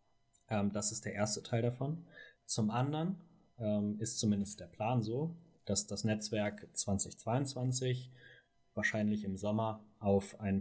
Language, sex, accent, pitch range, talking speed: German, male, German, 100-120 Hz, 130 wpm